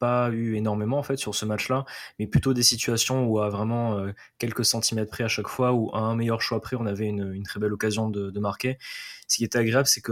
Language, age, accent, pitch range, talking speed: French, 20-39, French, 105-120 Hz, 265 wpm